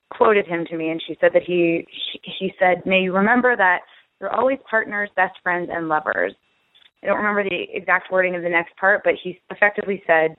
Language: English